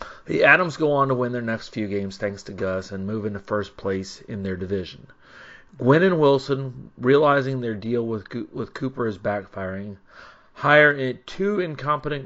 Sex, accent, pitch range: male, American, 110-145 Hz